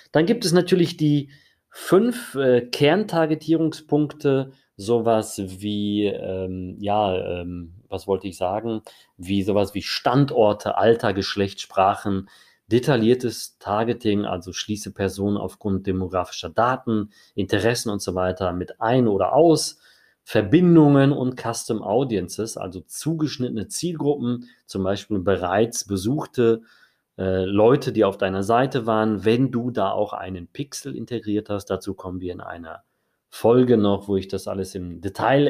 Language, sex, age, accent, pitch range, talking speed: German, male, 30-49, German, 95-130 Hz, 130 wpm